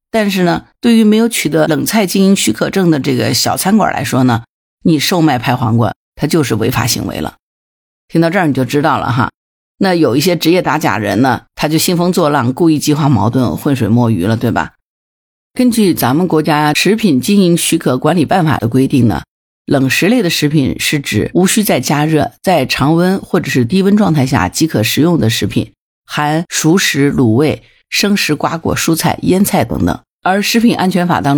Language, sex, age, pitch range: Chinese, female, 50-69, 130-175 Hz